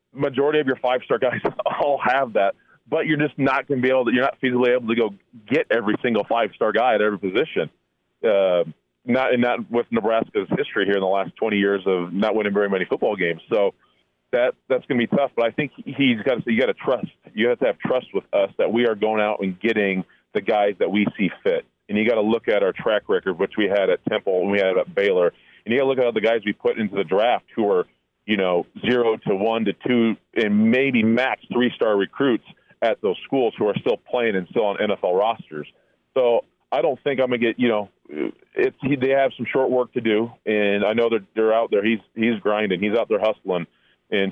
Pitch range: 100-135 Hz